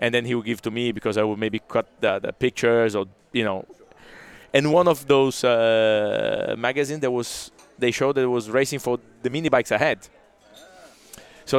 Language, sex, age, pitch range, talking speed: English, male, 20-39, 110-130 Hz, 195 wpm